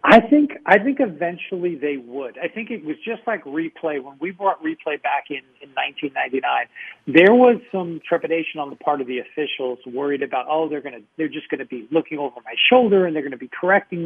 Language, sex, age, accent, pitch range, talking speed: English, male, 40-59, American, 145-175 Hz, 220 wpm